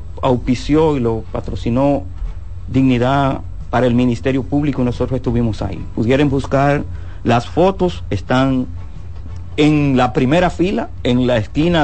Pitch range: 95-130 Hz